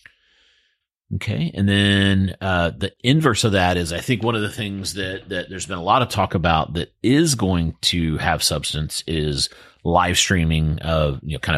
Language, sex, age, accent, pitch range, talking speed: English, male, 40-59, American, 80-100 Hz, 190 wpm